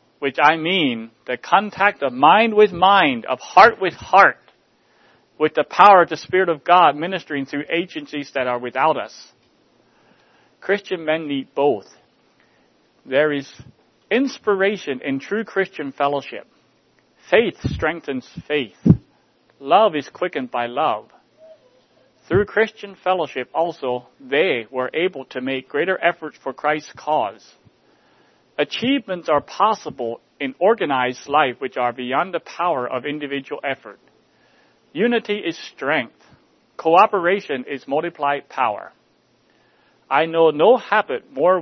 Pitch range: 130-180 Hz